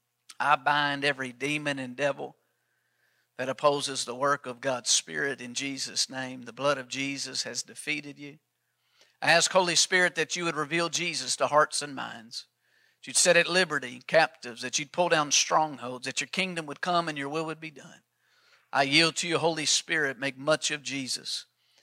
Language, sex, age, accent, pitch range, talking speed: English, male, 50-69, American, 135-160 Hz, 185 wpm